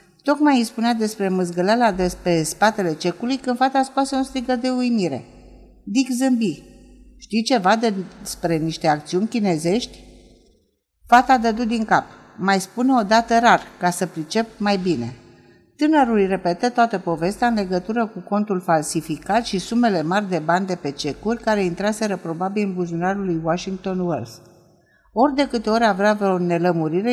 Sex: female